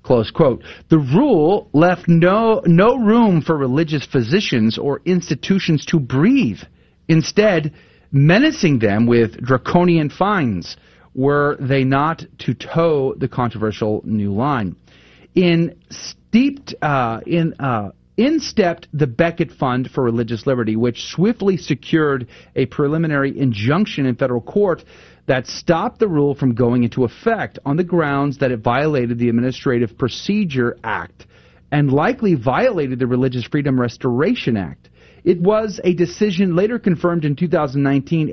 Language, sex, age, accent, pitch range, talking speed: English, male, 40-59, American, 120-170 Hz, 135 wpm